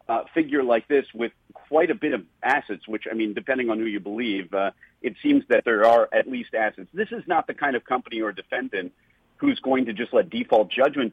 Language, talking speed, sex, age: English, 230 wpm, male, 50-69